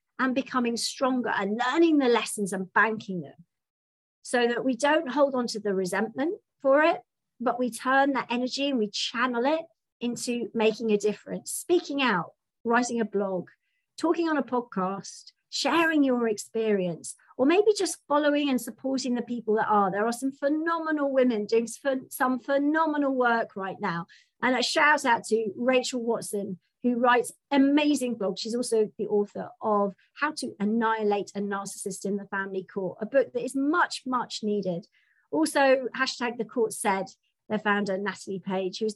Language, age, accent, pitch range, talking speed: English, 40-59, British, 205-270 Hz, 170 wpm